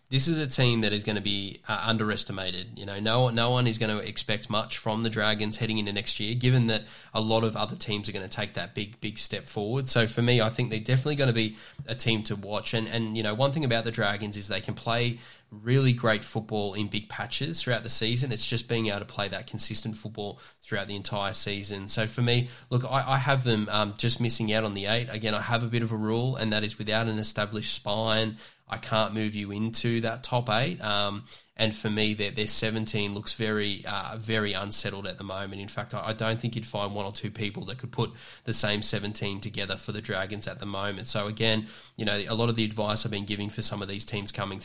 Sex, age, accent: male, 10-29, Australian